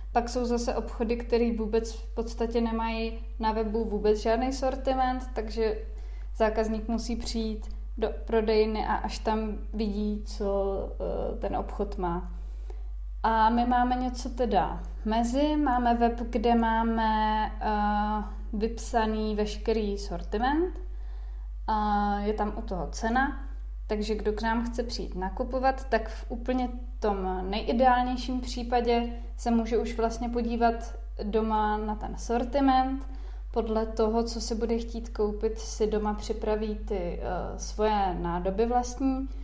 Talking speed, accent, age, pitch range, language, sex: 125 wpm, native, 20-39, 210-235 Hz, Czech, female